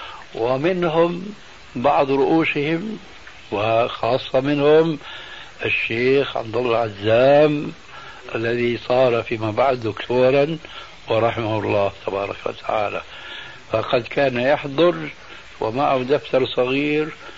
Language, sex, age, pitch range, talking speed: Arabic, male, 60-79, 115-150 Hz, 80 wpm